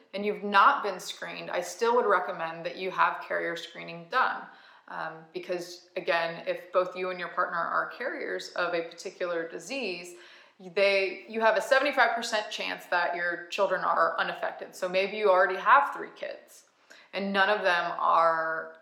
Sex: female